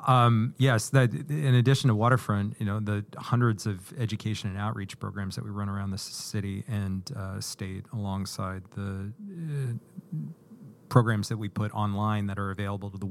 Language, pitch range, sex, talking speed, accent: English, 100-120 Hz, male, 175 wpm, American